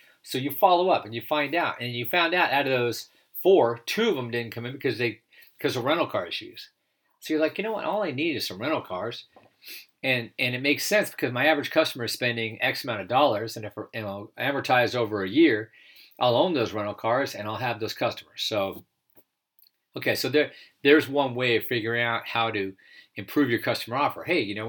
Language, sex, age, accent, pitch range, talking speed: English, male, 50-69, American, 115-145 Hz, 225 wpm